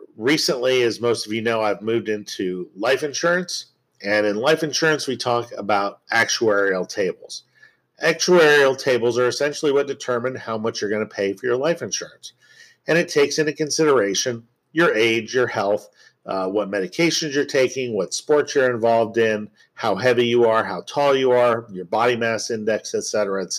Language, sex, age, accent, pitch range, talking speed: English, male, 50-69, American, 110-160 Hz, 180 wpm